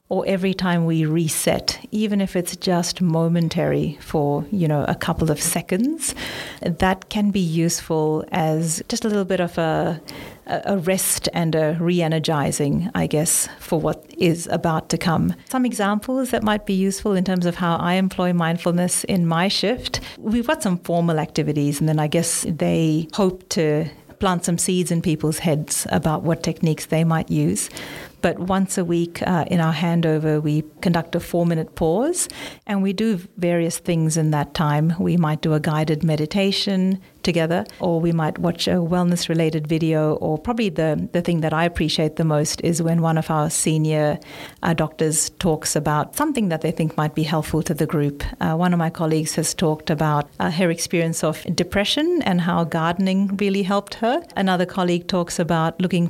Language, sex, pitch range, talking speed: English, female, 160-190 Hz, 185 wpm